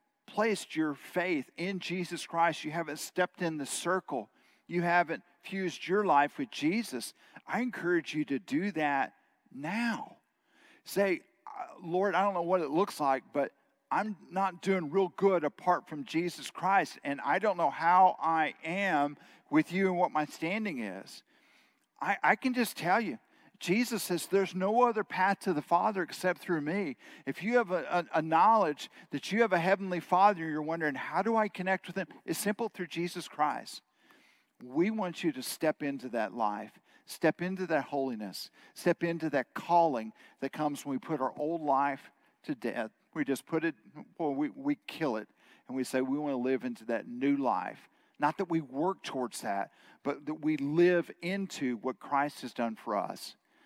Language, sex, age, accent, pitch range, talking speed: English, male, 50-69, American, 150-195 Hz, 185 wpm